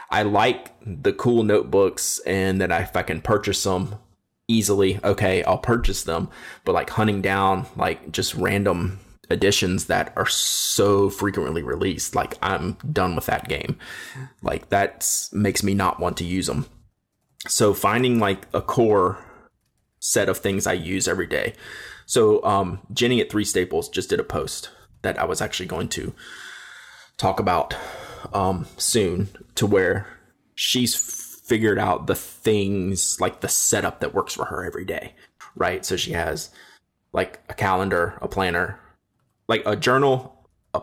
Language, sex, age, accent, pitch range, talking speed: English, male, 20-39, American, 95-135 Hz, 155 wpm